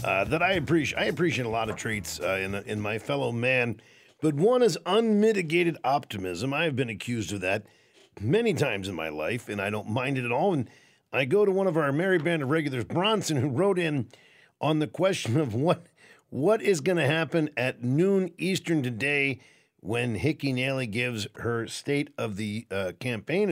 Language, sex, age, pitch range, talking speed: English, male, 50-69, 120-175 Hz, 200 wpm